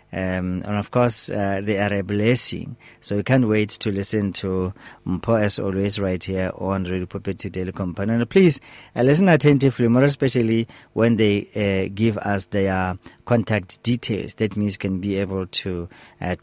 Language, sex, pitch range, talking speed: English, male, 95-115 Hz, 180 wpm